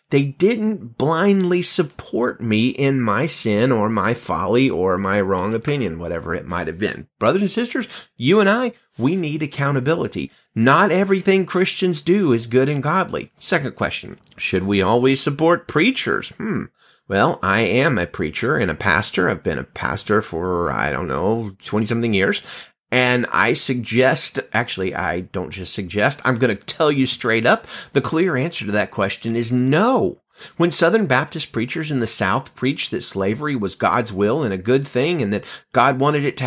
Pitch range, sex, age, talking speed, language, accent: 115-185 Hz, male, 30-49, 180 wpm, English, American